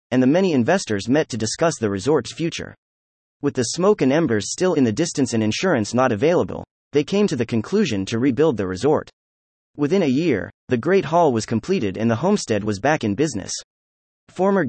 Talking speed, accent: 195 wpm, American